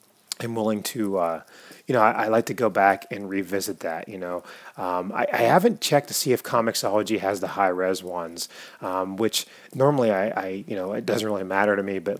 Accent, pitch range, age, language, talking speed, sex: American, 95-115 Hz, 30-49, English, 220 wpm, male